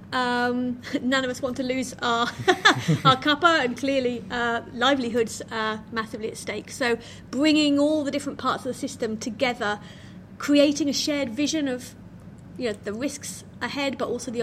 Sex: female